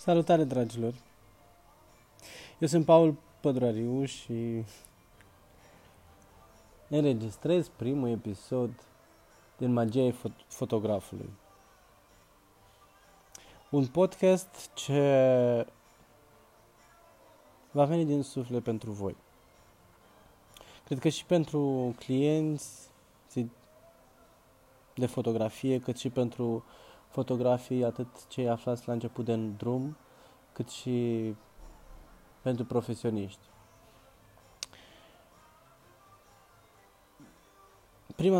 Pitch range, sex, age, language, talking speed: 110-130 Hz, male, 20-39, Romanian, 70 wpm